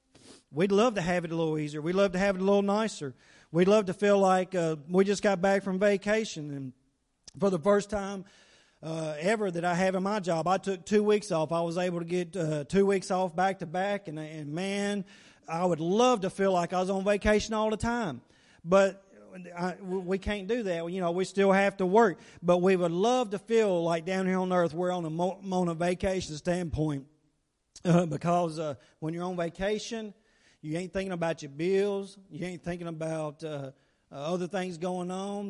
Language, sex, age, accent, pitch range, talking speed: English, male, 40-59, American, 170-200 Hz, 215 wpm